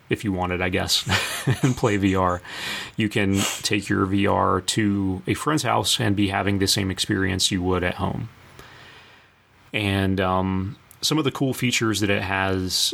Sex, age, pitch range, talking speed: male, 30-49, 95-115 Hz, 170 wpm